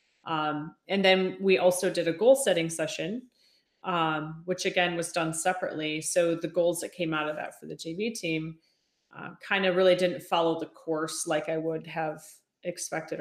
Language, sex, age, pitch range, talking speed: English, female, 30-49, 155-180 Hz, 180 wpm